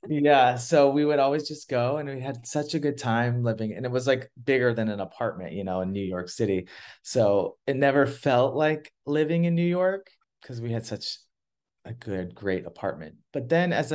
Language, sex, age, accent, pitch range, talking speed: English, male, 30-49, American, 100-135 Hz, 210 wpm